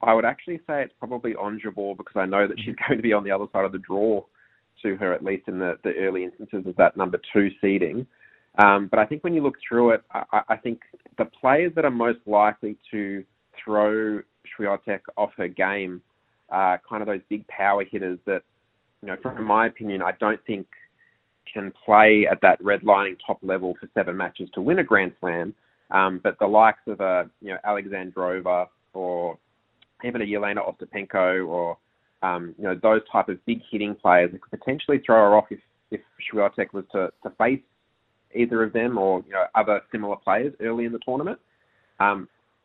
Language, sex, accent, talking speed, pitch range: English, male, Australian, 200 wpm, 95-115 Hz